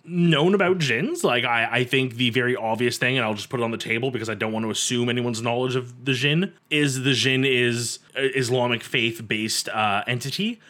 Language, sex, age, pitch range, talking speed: English, male, 20-39, 120-150 Hz, 220 wpm